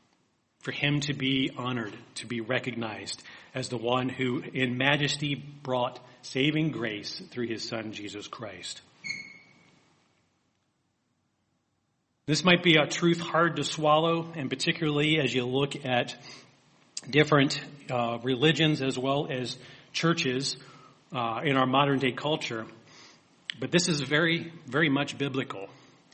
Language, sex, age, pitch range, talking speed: English, male, 40-59, 125-155 Hz, 125 wpm